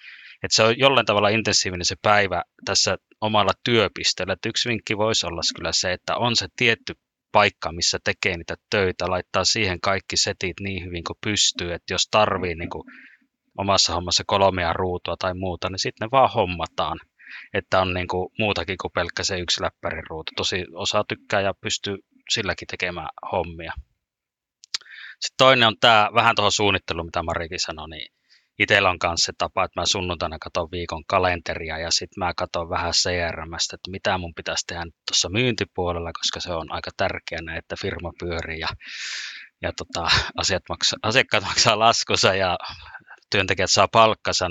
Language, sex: Finnish, male